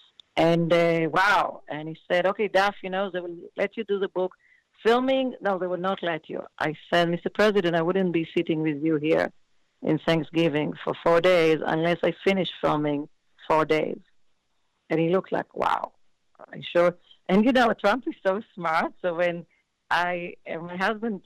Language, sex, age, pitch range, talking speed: English, female, 50-69, 165-200 Hz, 185 wpm